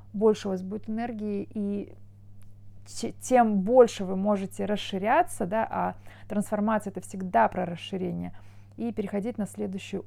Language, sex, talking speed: Russian, female, 130 wpm